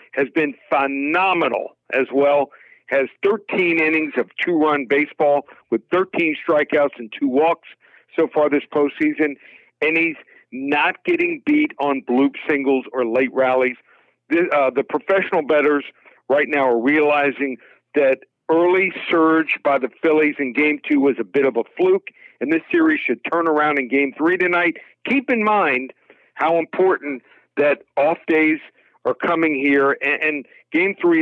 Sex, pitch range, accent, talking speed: male, 140-190 Hz, American, 155 wpm